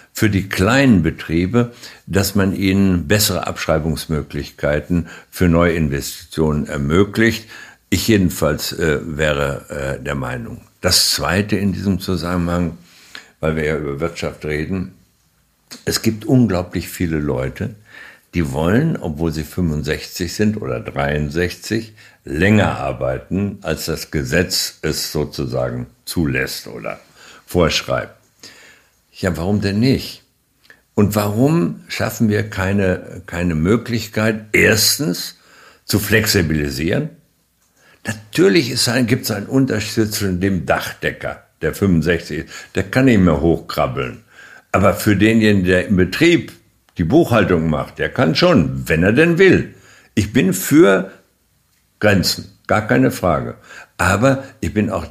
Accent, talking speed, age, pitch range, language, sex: German, 120 wpm, 60-79, 80-110 Hz, German, male